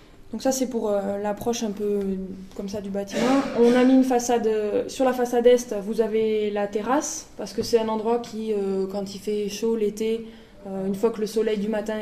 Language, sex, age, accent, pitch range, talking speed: French, female, 20-39, French, 200-230 Hz, 210 wpm